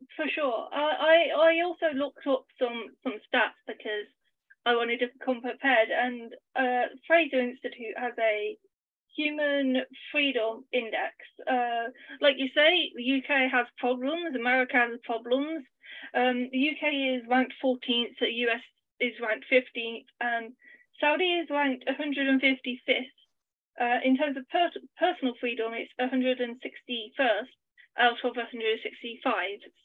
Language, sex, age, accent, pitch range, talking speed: English, female, 30-49, British, 235-285 Hz, 130 wpm